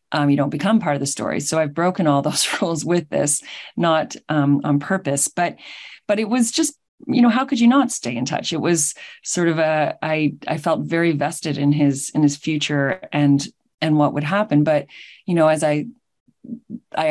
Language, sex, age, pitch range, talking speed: English, female, 30-49, 145-170 Hz, 210 wpm